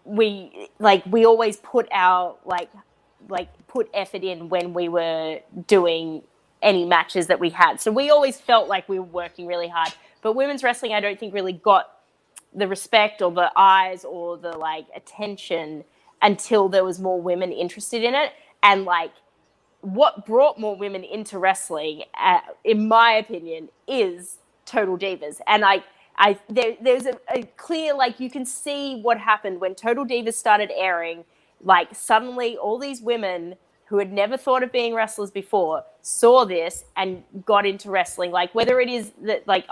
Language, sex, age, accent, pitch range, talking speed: English, female, 20-39, Australian, 185-235 Hz, 170 wpm